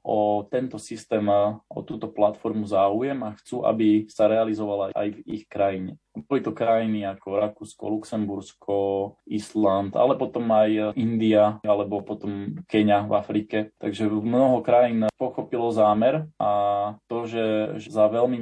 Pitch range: 100-110 Hz